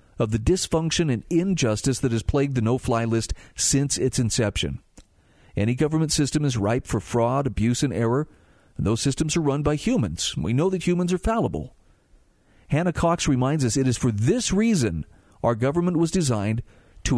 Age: 50-69